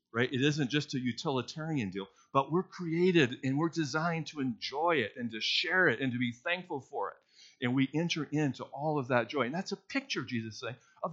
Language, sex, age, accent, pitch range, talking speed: English, male, 50-69, American, 105-150 Hz, 220 wpm